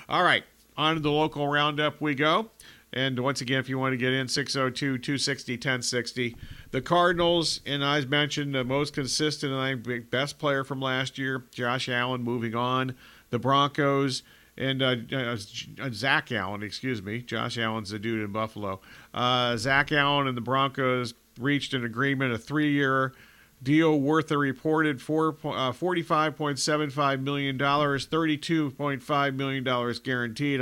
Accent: American